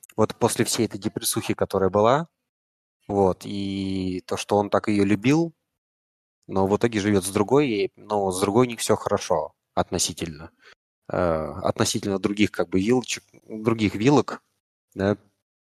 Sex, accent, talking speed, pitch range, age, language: male, native, 145 wpm, 95-115 Hz, 20-39, Russian